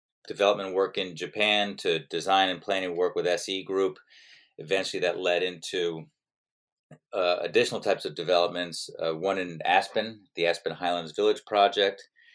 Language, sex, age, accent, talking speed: English, male, 30-49, American, 145 wpm